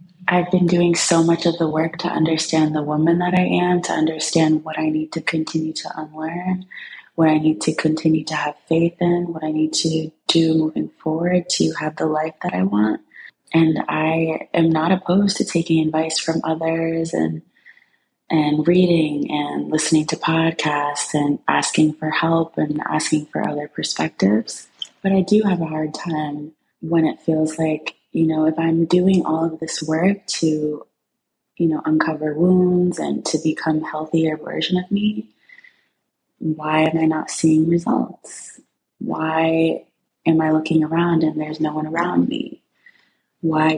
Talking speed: 170 wpm